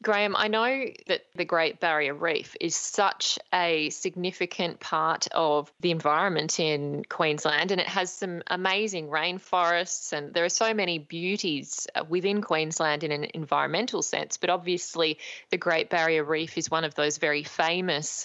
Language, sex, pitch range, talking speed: English, female, 155-185 Hz, 160 wpm